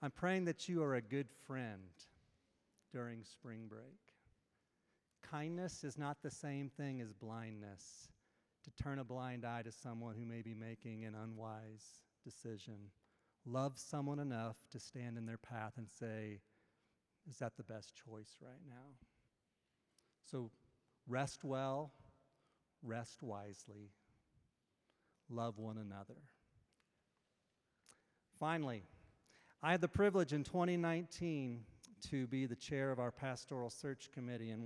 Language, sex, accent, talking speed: English, male, American, 130 wpm